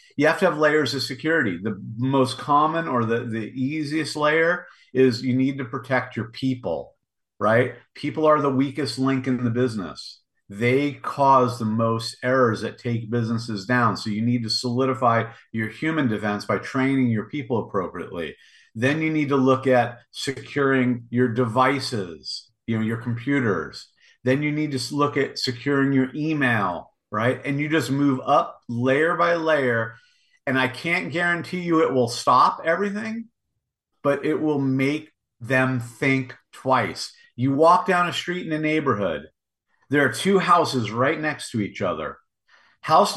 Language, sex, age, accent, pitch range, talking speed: English, male, 50-69, American, 125-160 Hz, 165 wpm